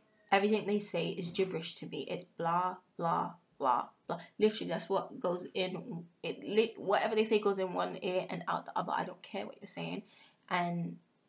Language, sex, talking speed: English, female, 190 wpm